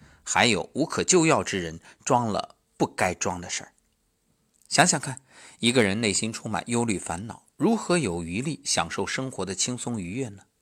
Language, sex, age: Chinese, male, 50-69